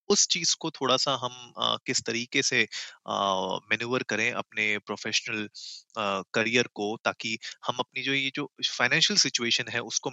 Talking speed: 160 wpm